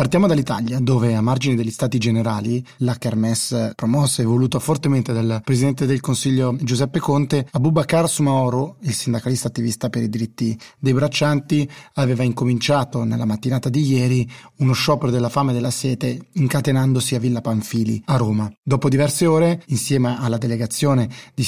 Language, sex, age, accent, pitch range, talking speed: Italian, male, 30-49, native, 125-140 Hz, 155 wpm